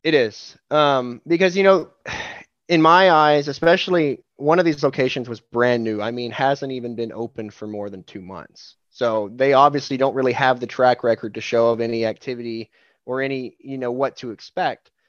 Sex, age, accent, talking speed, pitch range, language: male, 20-39, American, 195 wpm, 110-140 Hz, English